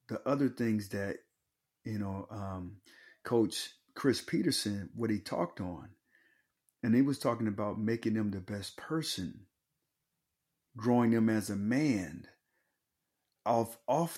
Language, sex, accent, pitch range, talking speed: English, male, American, 105-130 Hz, 130 wpm